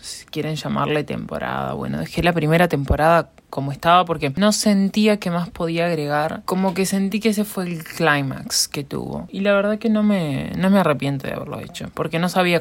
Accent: Argentinian